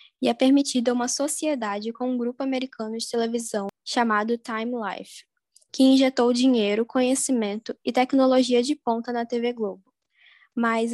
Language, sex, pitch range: Portuguese, female, 230-255 Hz